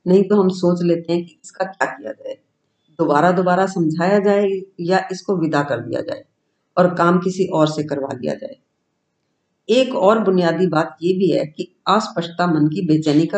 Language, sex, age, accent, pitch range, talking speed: Hindi, female, 50-69, native, 160-210 Hz, 110 wpm